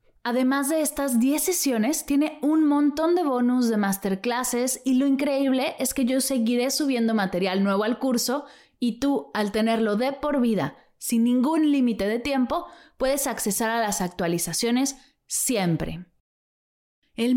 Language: Spanish